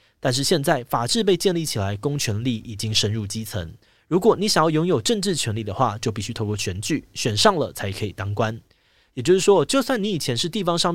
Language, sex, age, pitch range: Chinese, male, 20-39, 105-155 Hz